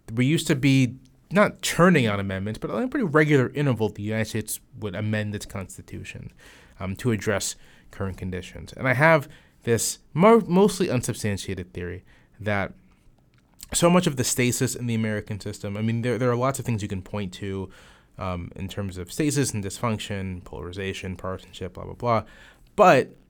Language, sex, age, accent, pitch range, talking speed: English, male, 30-49, American, 95-125 Hz, 170 wpm